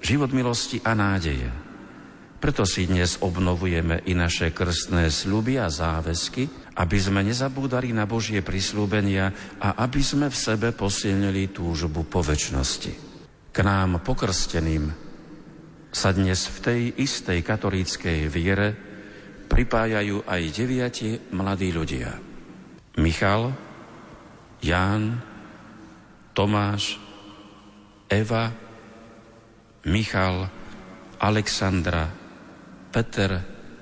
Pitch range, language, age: 90-110 Hz, Slovak, 50-69